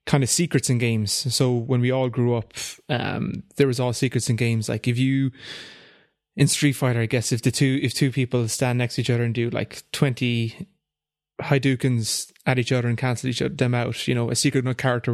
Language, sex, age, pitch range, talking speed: English, male, 20-39, 120-145 Hz, 230 wpm